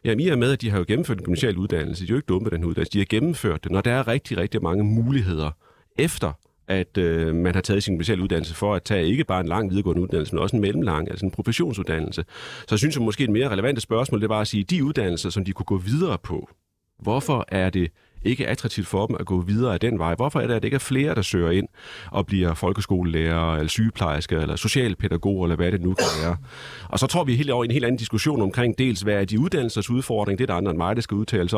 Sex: male